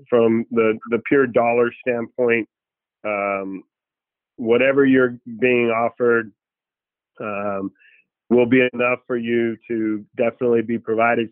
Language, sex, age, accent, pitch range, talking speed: English, male, 40-59, American, 110-125 Hz, 110 wpm